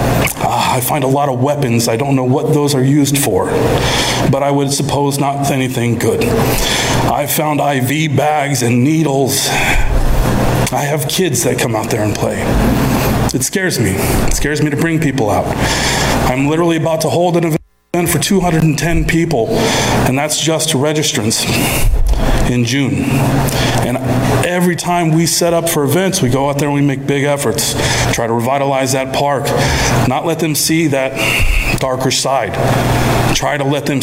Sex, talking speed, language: male, 170 wpm, English